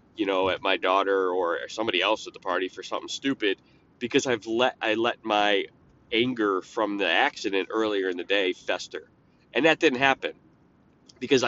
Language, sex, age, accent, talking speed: English, male, 30-49, American, 180 wpm